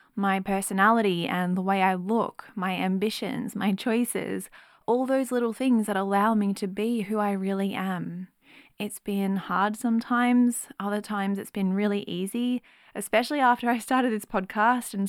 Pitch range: 195-240 Hz